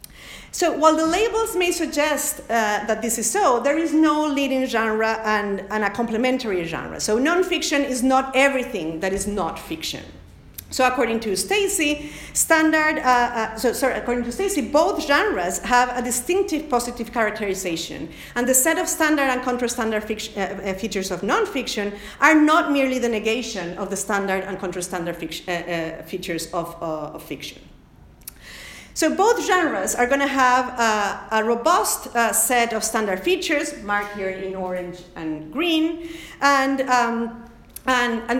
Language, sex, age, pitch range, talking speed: English, female, 50-69, 200-285 Hz, 165 wpm